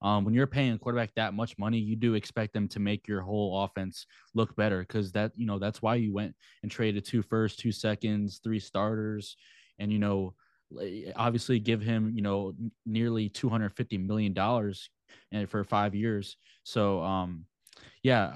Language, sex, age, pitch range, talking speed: English, male, 20-39, 105-115 Hz, 185 wpm